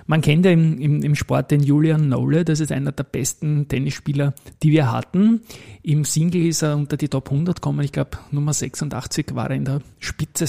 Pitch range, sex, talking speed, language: 135-155 Hz, male, 210 wpm, German